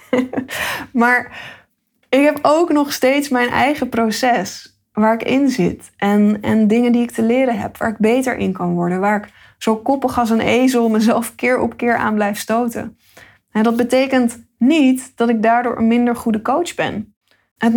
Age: 20-39